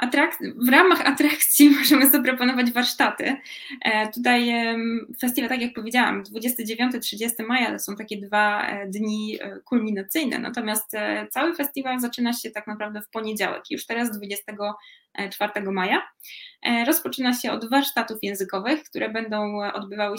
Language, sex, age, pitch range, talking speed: Polish, female, 20-39, 210-265 Hz, 120 wpm